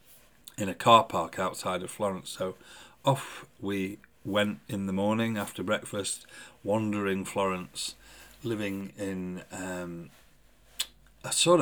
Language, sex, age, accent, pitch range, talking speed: English, male, 40-59, British, 100-130 Hz, 120 wpm